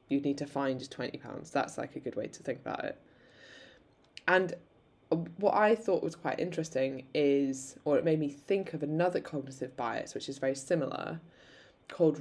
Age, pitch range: 20-39, 135-165 Hz